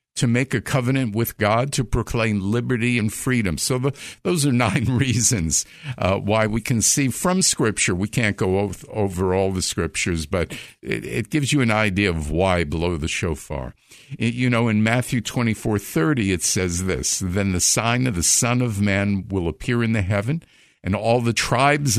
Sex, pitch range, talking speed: male, 100-135 Hz, 190 wpm